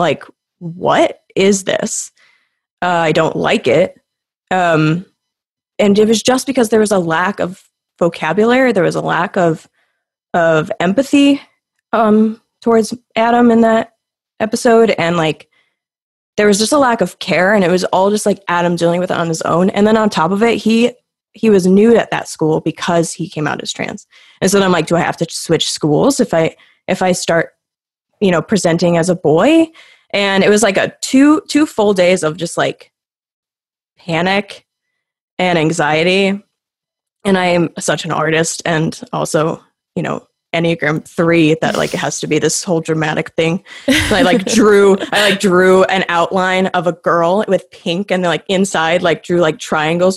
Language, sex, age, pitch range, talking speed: English, female, 20-39, 170-230 Hz, 185 wpm